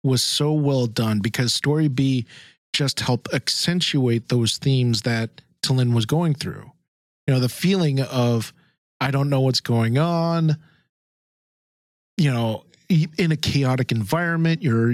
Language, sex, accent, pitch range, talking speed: English, male, American, 120-155 Hz, 140 wpm